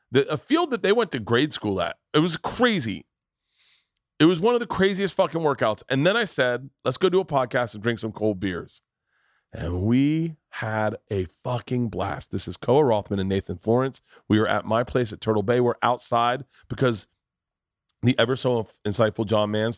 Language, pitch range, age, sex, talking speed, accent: English, 110-155 Hz, 40-59, male, 195 wpm, American